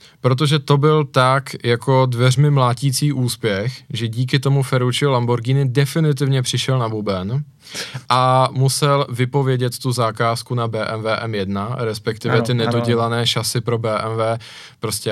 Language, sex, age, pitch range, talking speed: Czech, male, 20-39, 110-135 Hz, 125 wpm